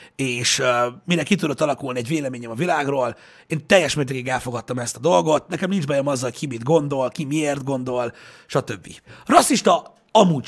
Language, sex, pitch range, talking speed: Hungarian, male, 130-185 Hz, 170 wpm